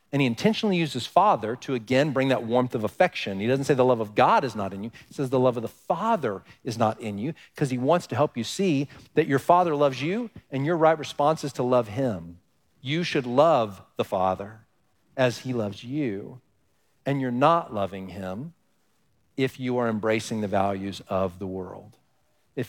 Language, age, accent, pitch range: English, 40-59, American, 115-170 Hz